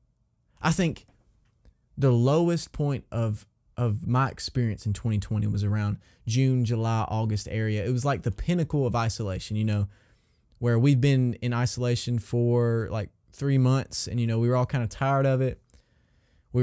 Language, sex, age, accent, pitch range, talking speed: English, male, 20-39, American, 115-140 Hz, 170 wpm